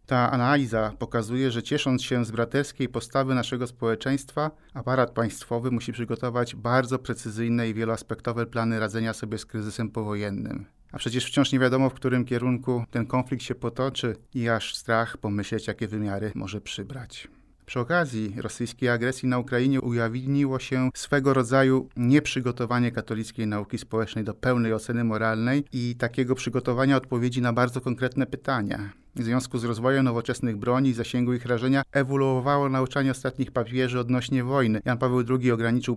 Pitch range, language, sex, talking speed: 115-130 Hz, Polish, male, 150 wpm